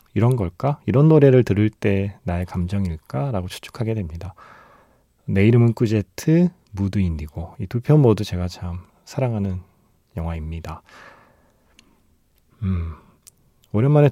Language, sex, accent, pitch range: Korean, male, native, 95-130 Hz